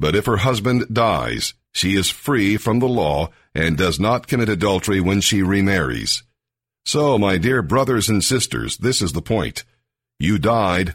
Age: 50-69